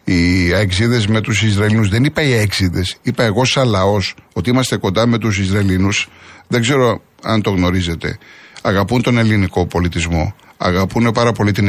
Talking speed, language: 160 wpm, Greek